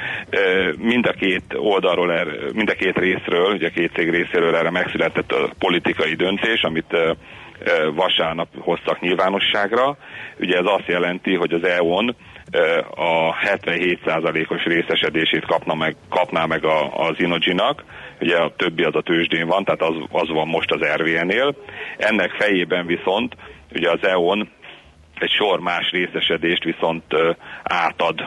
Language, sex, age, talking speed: Hungarian, male, 40-59, 140 wpm